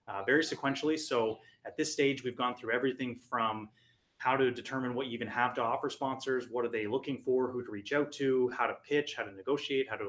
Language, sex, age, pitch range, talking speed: English, male, 20-39, 110-130 Hz, 240 wpm